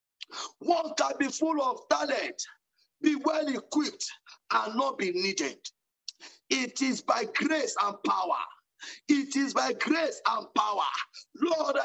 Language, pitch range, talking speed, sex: English, 270-325 Hz, 130 wpm, male